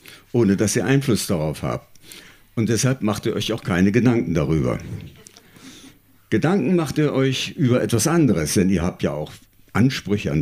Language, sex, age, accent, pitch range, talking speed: German, male, 60-79, German, 95-125 Hz, 165 wpm